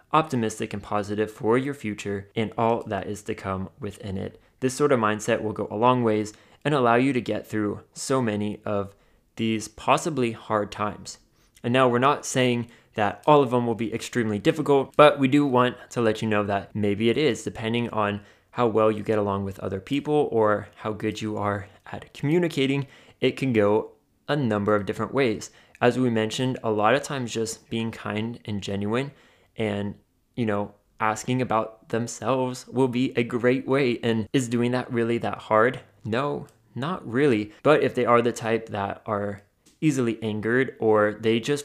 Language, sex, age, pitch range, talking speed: English, male, 20-39, 105-125 Hz, 190 wpm